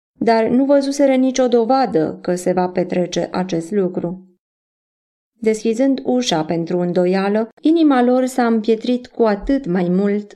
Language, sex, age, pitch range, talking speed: Romanian, female, 20-39, 185-235 Hz, 135 wpm